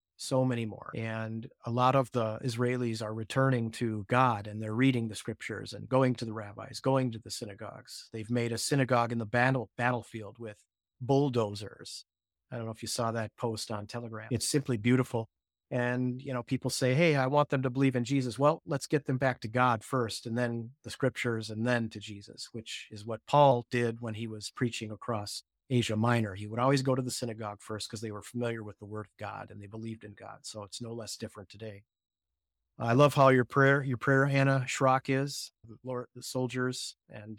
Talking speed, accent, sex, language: 215 wpm, American, male, English